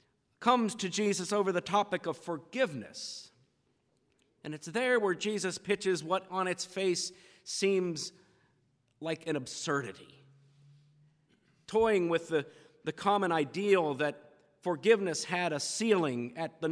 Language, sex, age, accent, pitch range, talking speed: English, male, 50-69, American, 145-200 Hz, 125 wpm